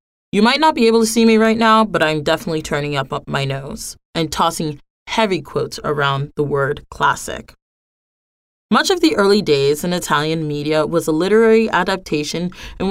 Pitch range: 150-210 Hz